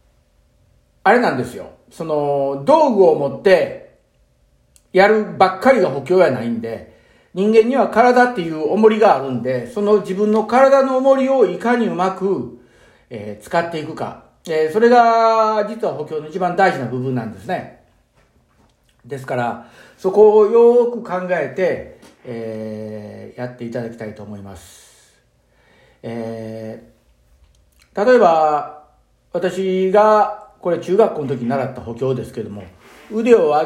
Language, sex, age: Japanese, male, 50-69